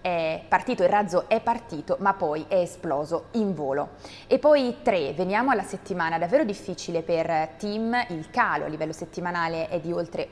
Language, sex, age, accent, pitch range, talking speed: Italian, female, 20-39, native, 165-195 Hz, 175 wpm